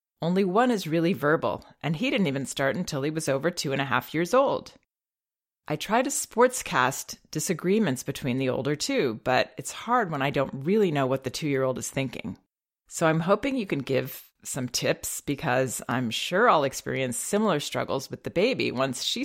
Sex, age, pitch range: female, 30-49, 135-170 Hz